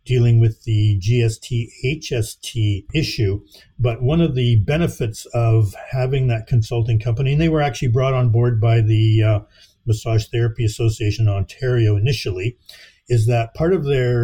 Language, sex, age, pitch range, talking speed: English, male, 50-69, 110-130 Hz, 155 wpm